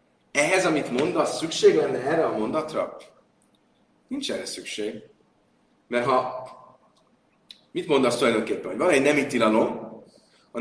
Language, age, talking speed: Hungarian, 30-49, 125 wpm